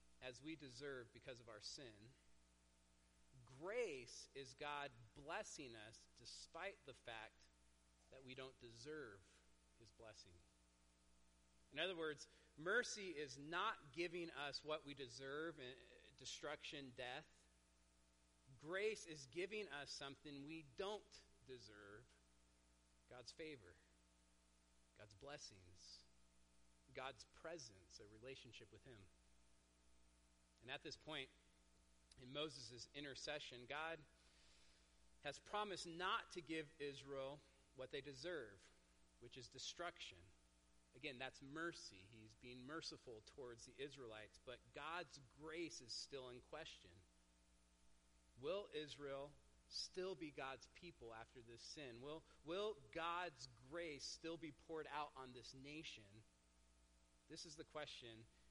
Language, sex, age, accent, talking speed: English, male, 40-59, American, 115 wpm